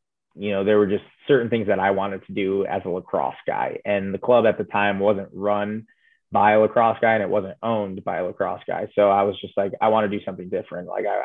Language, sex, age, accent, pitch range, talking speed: English, male, 20-39, American, 95-105 Hz, 260 wpm